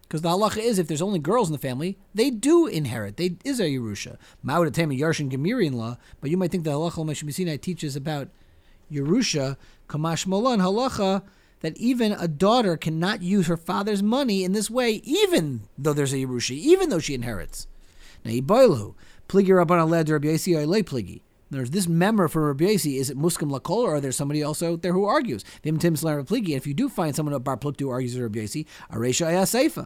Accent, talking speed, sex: American, 160 wpm, male